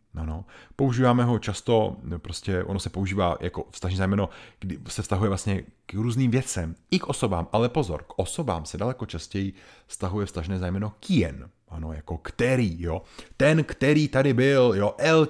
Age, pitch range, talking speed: 30-49, 95-135 Hz, 170 wpm